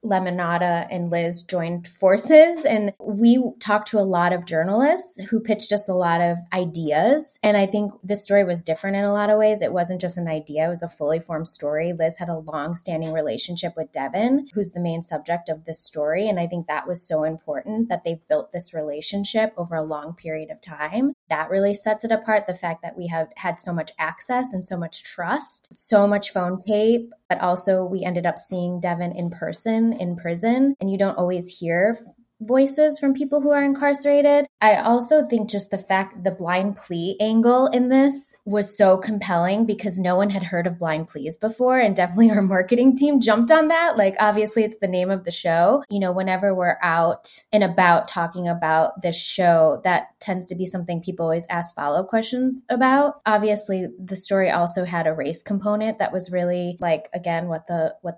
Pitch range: 170-215 Hz